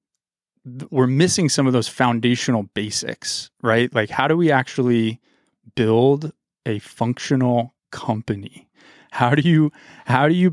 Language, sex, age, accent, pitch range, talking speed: English, male, 30-49, American, 110-130 Hz, 130 wpm